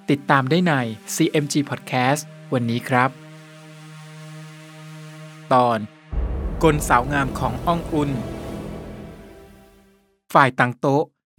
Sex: male